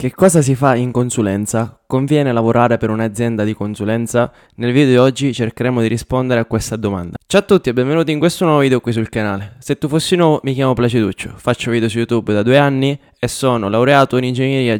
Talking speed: 215 wpm